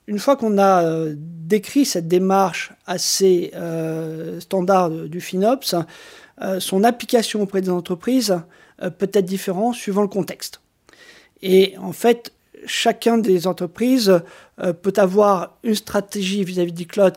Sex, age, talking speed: male, 40-59, 135 wpm